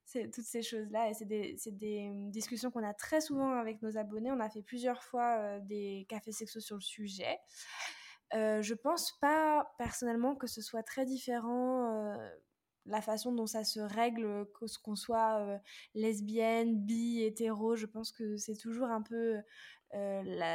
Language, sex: French, female